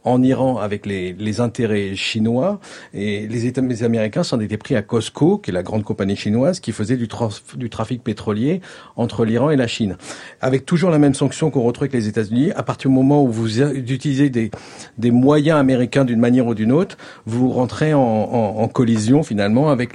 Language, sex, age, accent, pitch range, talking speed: French, male, 50-69, French, 110-130 Hz, 205 wpm